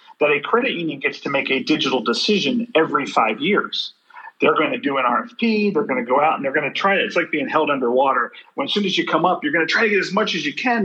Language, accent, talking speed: English, American, 295 wpm